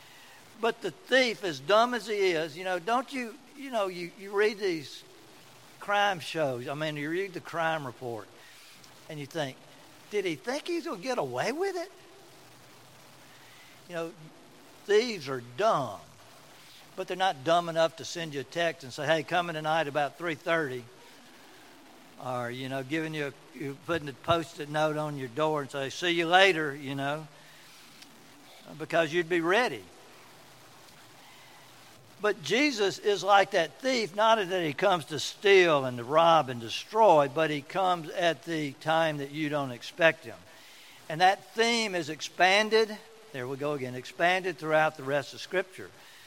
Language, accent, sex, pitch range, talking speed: English, American, male, 145-185 Hz, 165 wpm